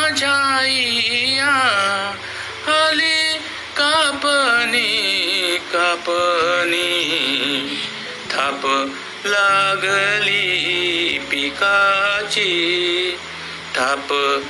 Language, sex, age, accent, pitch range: Marathi, male, 60-79, native, 165-265 Hz